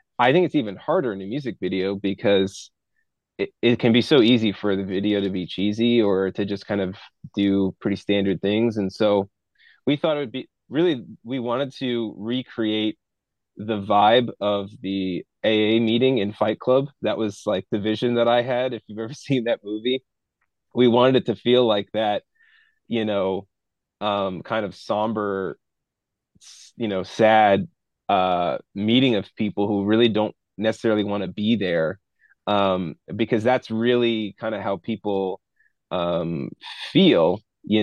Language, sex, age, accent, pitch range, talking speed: English, male, 20-39, American, 100-120 Hz, 165 wpm